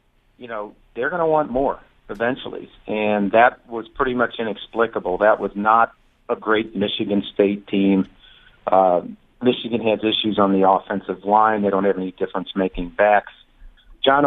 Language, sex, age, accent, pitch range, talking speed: English, male, 40-59, American, 100-120 Hz, 155 wpm